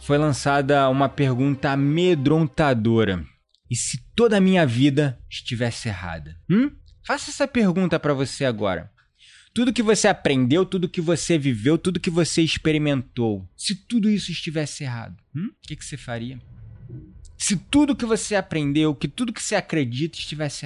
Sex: male